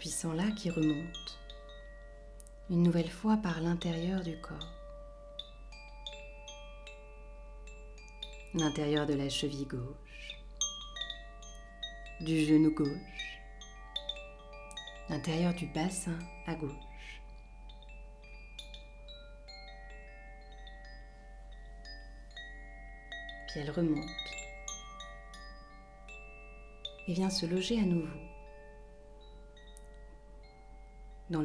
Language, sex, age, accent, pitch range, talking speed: French, female, 40-59, French, 145-175 Hz, 65 wpm